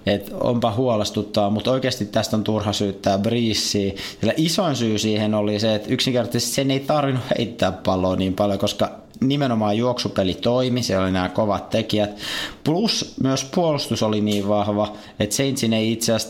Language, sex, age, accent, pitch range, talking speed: Finnish, male, 20-39, native, 100-120 Hz, 160 wpm